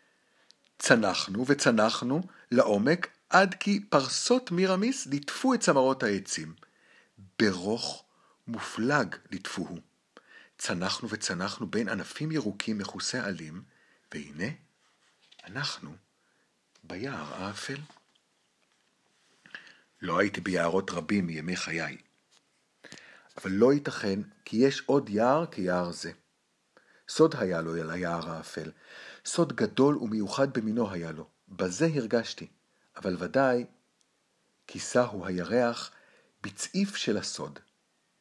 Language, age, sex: Hebrew, 60-79, male